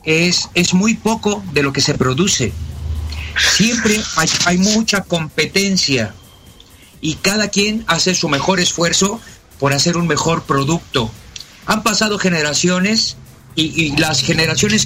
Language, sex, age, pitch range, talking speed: Spanish, male, 50-69, 140-190 Hz, 135 wpm